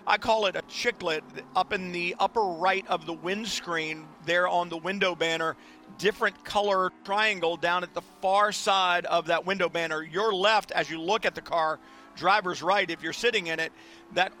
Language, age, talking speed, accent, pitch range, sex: English, 40-59, 190 wpm, American, 175-205 Hz, male